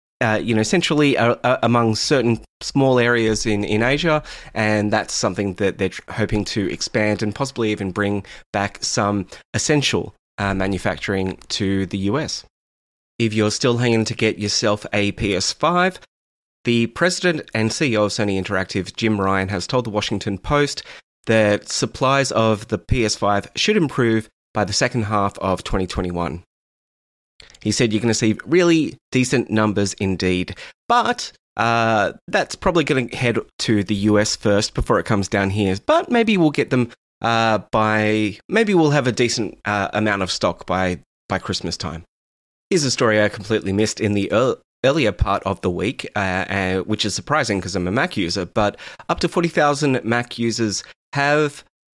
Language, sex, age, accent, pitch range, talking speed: English, male, 20-39, Australian, 100-125 Hz, 170 wpm